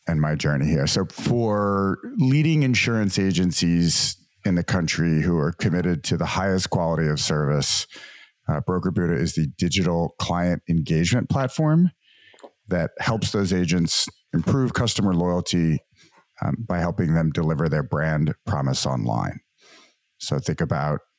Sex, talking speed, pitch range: male, 140 wpm, 80-95 Hz